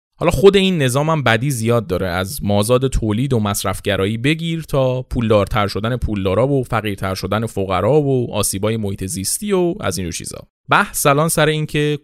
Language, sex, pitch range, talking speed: Persian, male, 100-150 Hz, 170 wpm